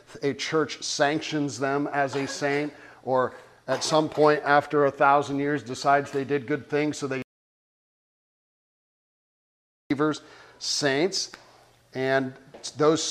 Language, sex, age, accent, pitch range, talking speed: English, male, 50-69, American, 135-155 Hz, 120 wpm